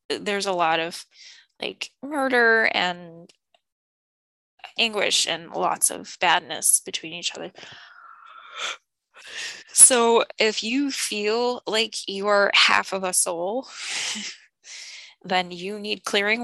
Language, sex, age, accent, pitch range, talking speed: English, female, 10-29, American, 185-225 Hz, 110 wpm